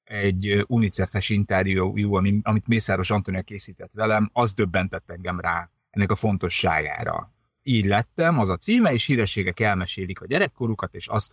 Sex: male